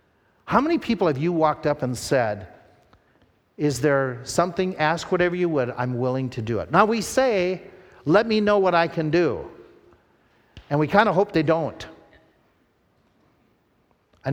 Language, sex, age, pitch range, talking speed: English, male, 50-69, 125-165 Hz, 165 wpm